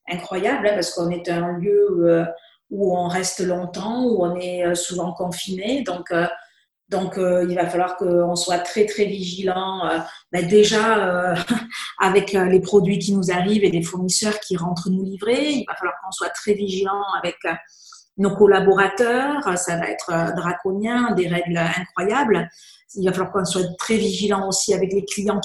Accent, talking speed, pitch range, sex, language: French, 160 wpm, 180-205 Hz, female, French